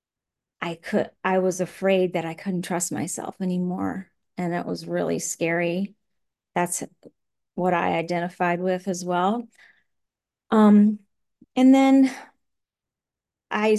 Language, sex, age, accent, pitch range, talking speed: English, female, 40-59, American, 180-220 Hz, 120 wpm